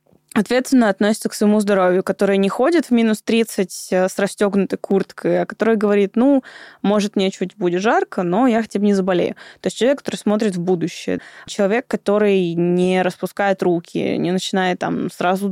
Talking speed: 175 wpm